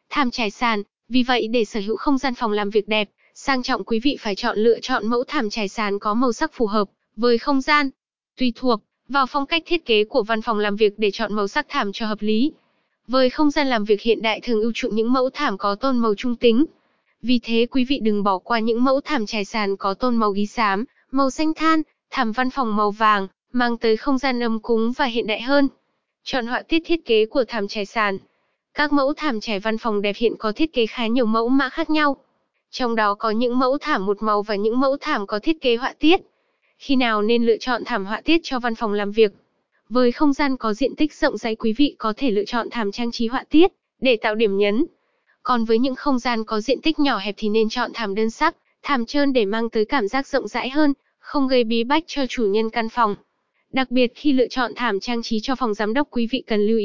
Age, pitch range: 20-39, 220-275 Hz